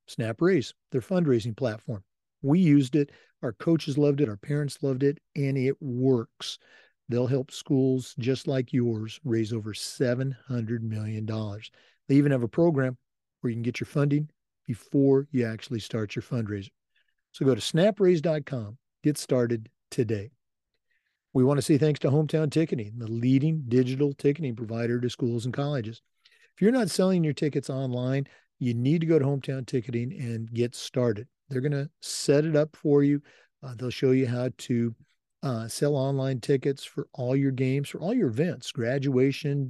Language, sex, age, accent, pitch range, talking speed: English, male, 50-69, American, 120-145 Hz, 170 wpm